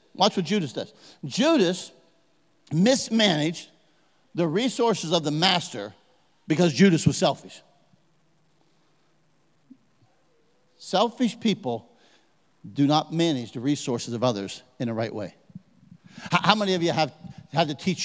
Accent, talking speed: American, 120 wpm